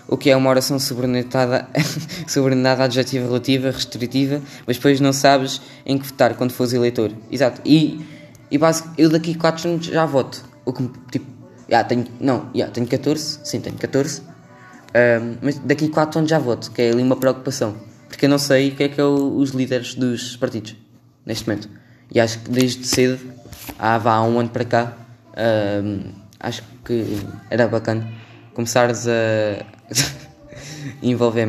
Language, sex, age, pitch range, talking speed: Portuguese, female, 10-29, 120-150 Hz, 170 wpm